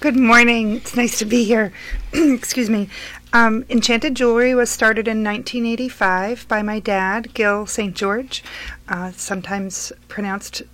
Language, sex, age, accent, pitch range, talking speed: English, female, 40-59, American, 185-225 Hz, 135 wpm